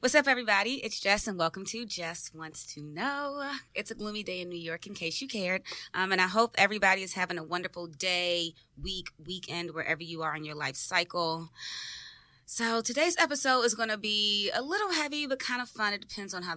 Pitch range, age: 150-195 Hz, 20-39